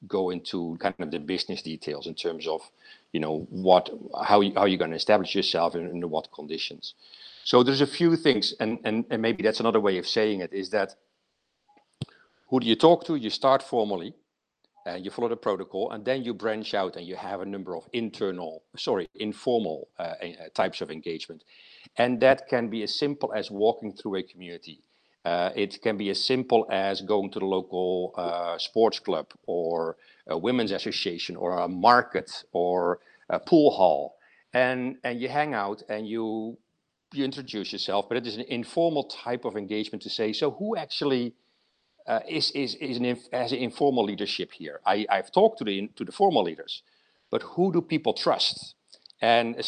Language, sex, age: English, male, 50-69